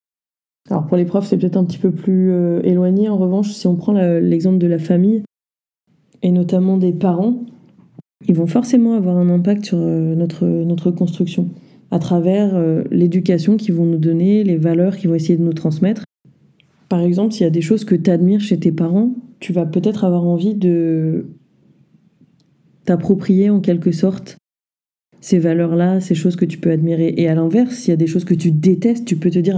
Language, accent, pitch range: French, French, 170-195 Hz